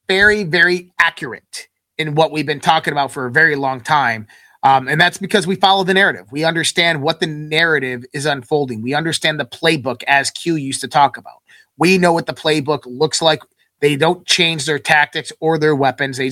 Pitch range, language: 140-170 Hz, English